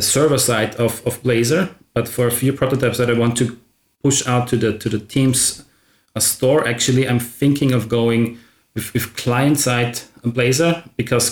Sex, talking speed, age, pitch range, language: male, 180 wpm, 30-49, 120-130 Hz, English